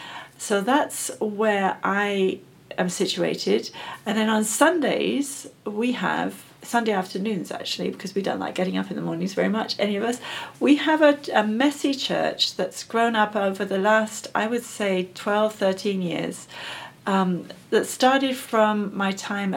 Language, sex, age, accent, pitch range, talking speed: English, female, 40-59, British, 185-215 Hz, 165 wpm